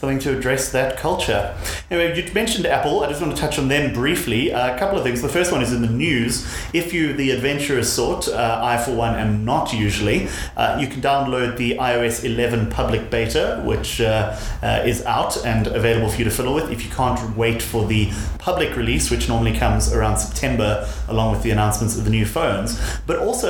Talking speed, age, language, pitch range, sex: 215 wpm, 30-49, English, 110-135 Hz, male